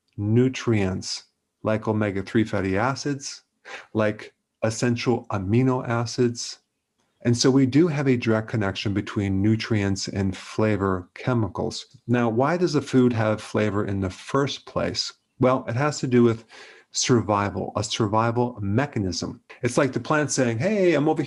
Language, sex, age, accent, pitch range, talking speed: English, male, 40-59, American, 105-130 Hz, 145 wpm